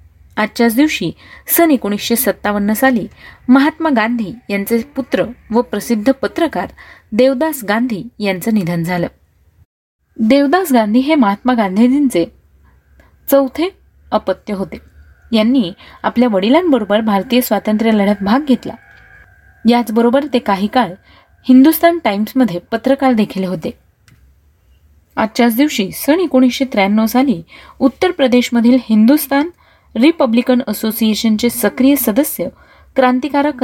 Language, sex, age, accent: Marathi, female, 30-49, native